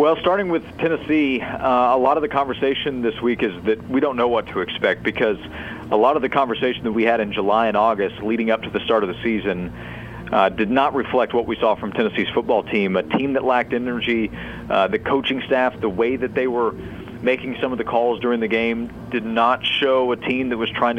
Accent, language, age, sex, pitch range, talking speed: American, English, 40-59, male, 110-130 Hz, 235 wpm